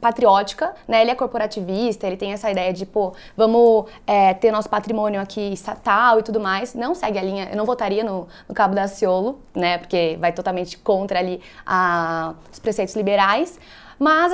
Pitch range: 205-260 Hz